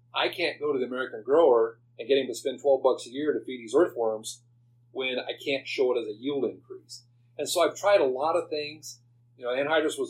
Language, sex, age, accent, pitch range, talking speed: English, male, 40-59, American, 120-140 Hz, 245 wpm